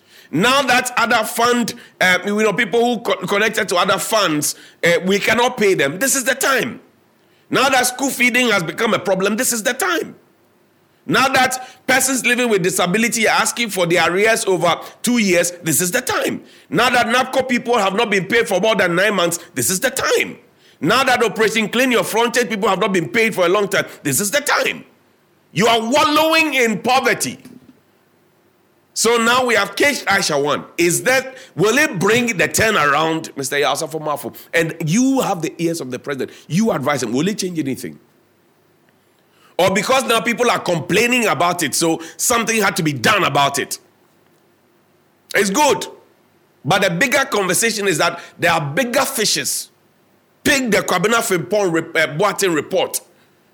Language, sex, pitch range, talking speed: English, male, 175-245 Hz, 180 wpm